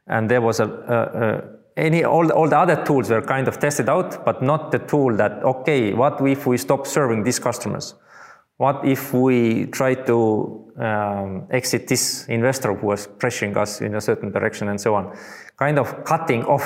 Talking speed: 195 wpm